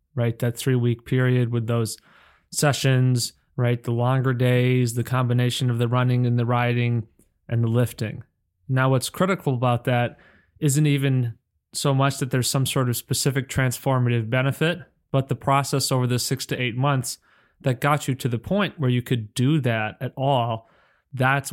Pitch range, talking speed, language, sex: 120-135 Hz, 175 wpm, English, male